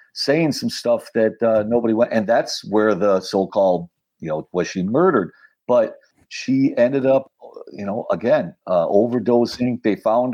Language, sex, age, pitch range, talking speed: English, male, 50-69, 100-135 Hz, 165 wpm